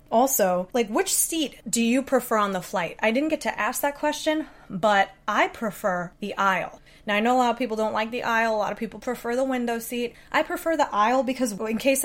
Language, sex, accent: English, female, American